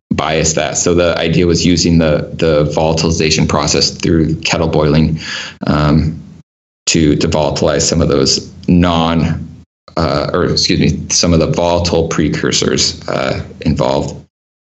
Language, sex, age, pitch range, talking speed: English, male, 20-39, 80-90 Hz, 135 wpm